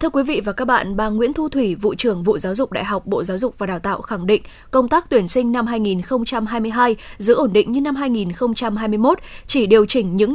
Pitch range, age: 215-260 Hz, 20-39